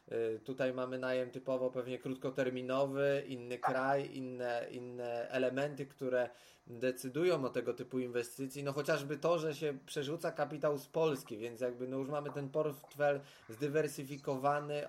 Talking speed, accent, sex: 135 wpm, native, male